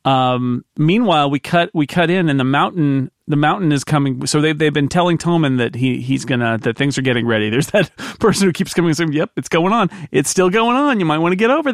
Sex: male